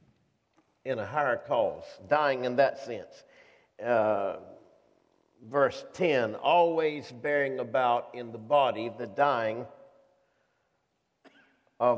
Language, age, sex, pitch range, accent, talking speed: English, 50-69, male, 120-150 Hz, American, 100 wpm